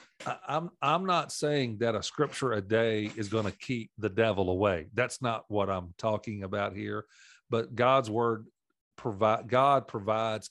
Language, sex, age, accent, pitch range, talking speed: English, male, 40-59, American, 100-115 Hz, 165 wpm